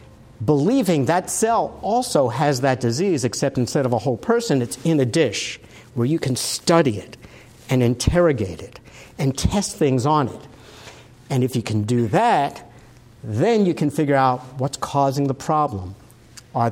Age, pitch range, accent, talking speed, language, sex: 50-69, 120-155 Hz, American, 165 wpm, English, male